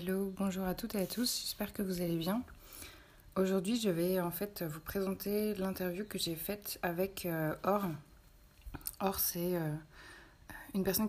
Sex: female